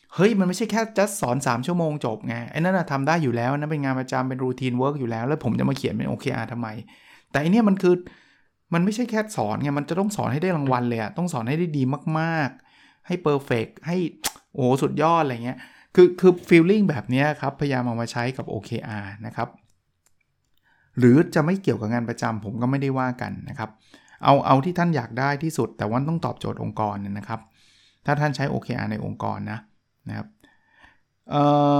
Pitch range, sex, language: 120-155 Hz, male, Thai